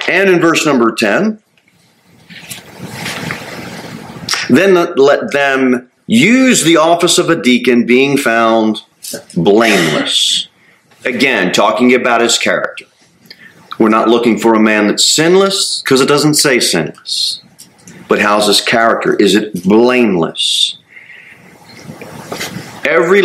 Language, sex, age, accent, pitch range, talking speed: English, male, 40-59, American, 110-150 Hz, 110 wpm